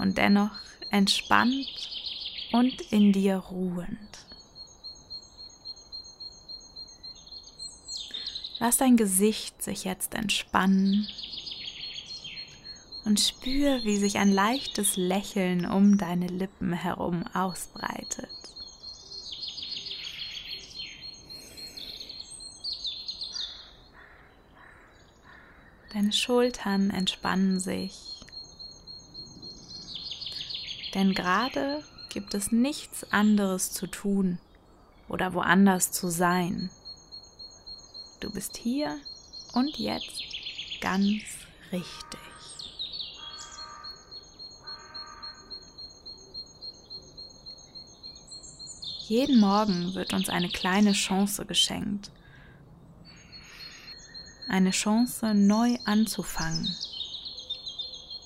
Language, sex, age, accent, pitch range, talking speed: German, female, 20-39, German, 180-215 Hz, 60 wpm